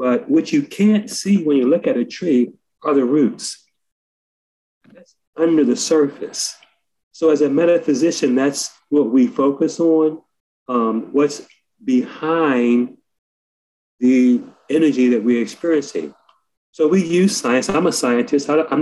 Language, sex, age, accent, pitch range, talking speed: English, male, 40-59, American, 120-165 Hz, 135 wpm